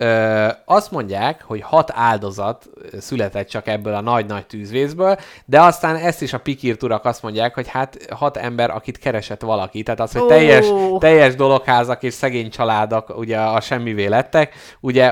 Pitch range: 105-140 Hz